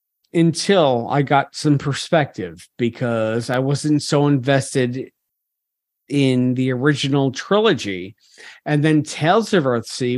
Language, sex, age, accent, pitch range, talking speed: English, male, 50-69, American, 130-170 Hz, 110 wpm